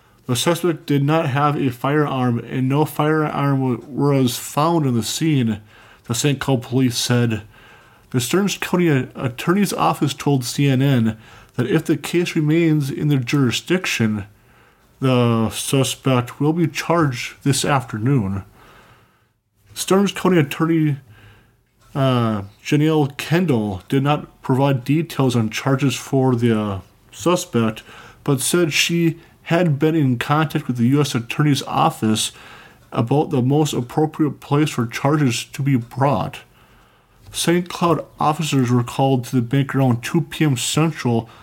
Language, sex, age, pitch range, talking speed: English, male, 20-39, 120-155 Hz, 135 wpm